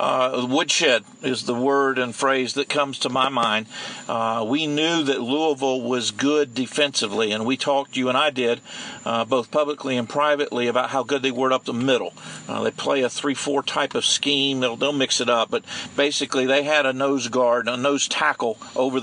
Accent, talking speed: American, 200 wpm